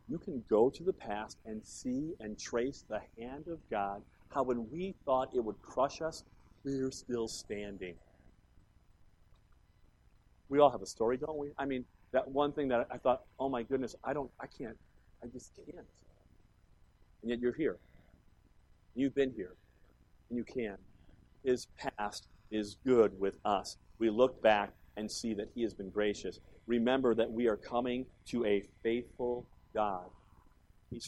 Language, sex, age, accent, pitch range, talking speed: English, male, 50-69, American, 100-135 Hz, 165 wpm